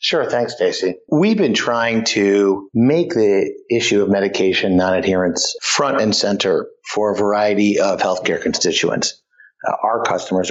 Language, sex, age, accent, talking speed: English, male, 50-69, American, 145 wpm